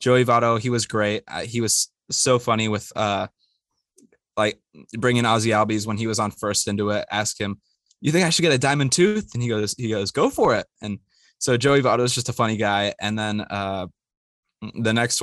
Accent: American